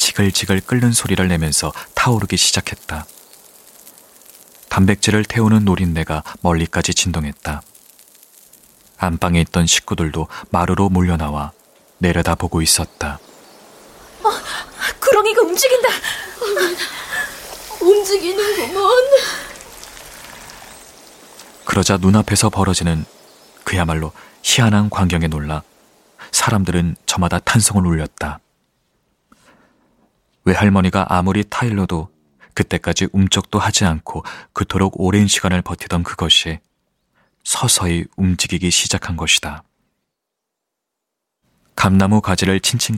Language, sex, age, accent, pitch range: Korean, male, 40-59, native, 85-105 Hz